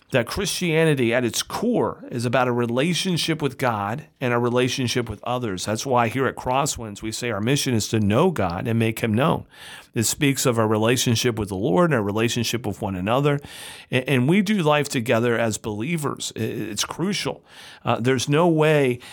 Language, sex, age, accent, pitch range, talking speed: English, male, 40-59, American, 115-140 Hz, 190 wpm